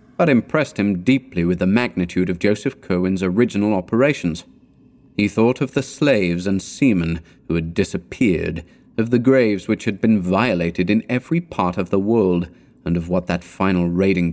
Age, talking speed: 30-49, 170 wpm